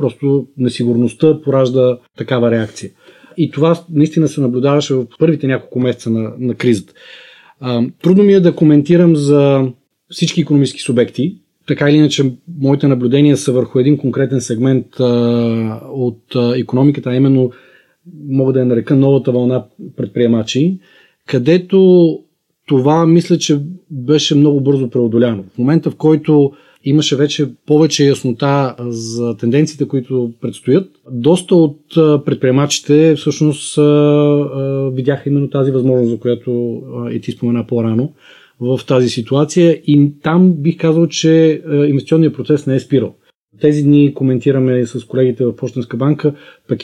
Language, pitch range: Bulgarian, 125-150 Hz